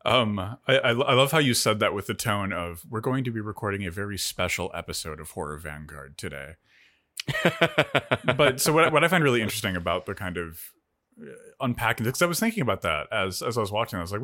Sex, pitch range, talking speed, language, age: male, 90-135 Hz, 225 wpm, English, 30-49